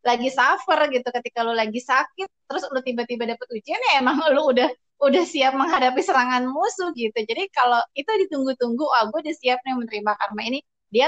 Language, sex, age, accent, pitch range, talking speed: Indonesian, female, 20-39, native, 240-310 Hz, 180 wpm